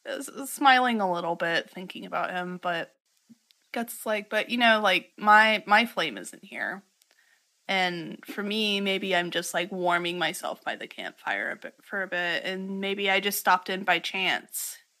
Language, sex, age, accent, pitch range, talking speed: English, female, 20-39, American, 175-205 Hz, 180 wpm